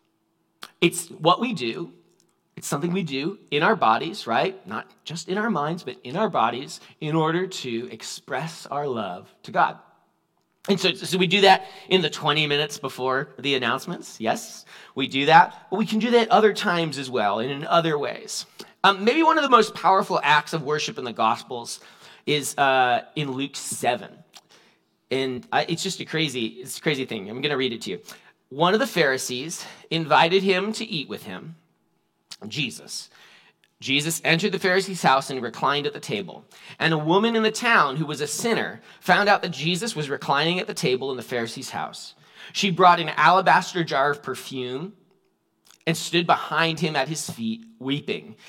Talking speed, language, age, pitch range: 190 wpm, English, 30-49, 145-190 Hz